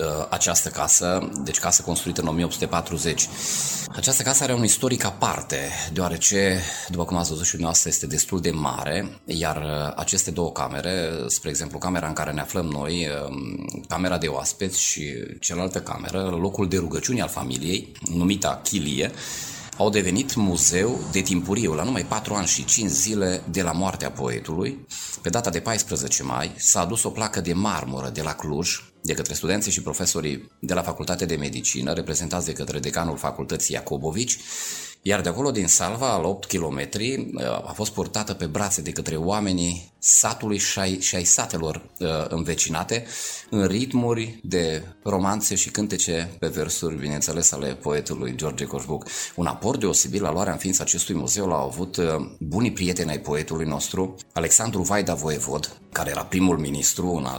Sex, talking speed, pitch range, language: male, 160 wpm, 80-95 Hz, Romanian